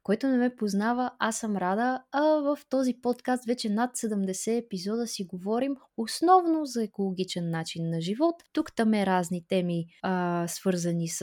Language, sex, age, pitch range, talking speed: Bulgarian, female, 20-39, 180-235 Hz, 155 wpm